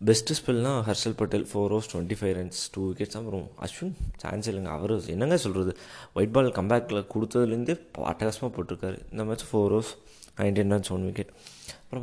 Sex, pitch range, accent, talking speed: male, 95-115 Hz, native, 170 wpm